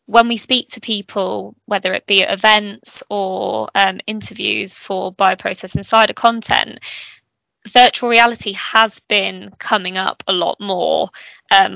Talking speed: 140 wpm